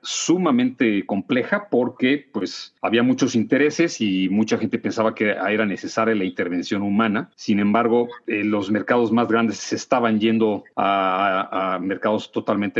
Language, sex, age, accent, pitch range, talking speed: Spanish, male, 40-59, Mexican, 100-120 Hz, 150 wpm